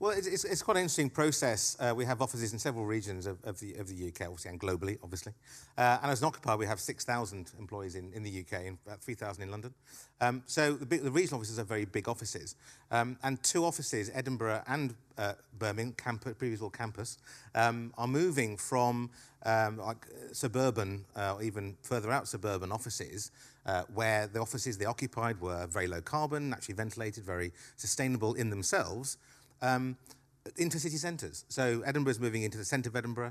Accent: British